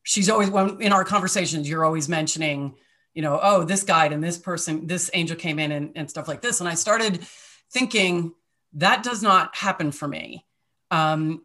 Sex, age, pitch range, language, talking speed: female, 30-49, 155-190 Hz, English, 190 wpm